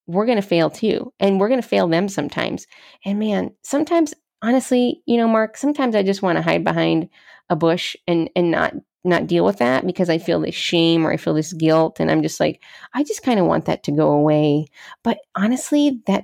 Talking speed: 225 wpm